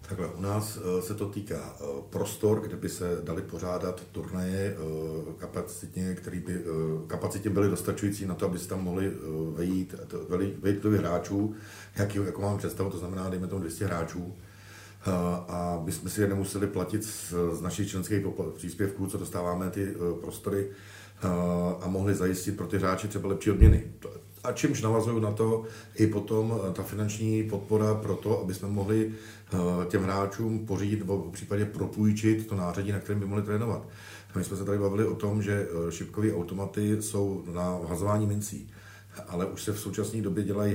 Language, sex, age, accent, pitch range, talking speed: Czech, male, 50-69, native, 90-105 Hz, 165 wpm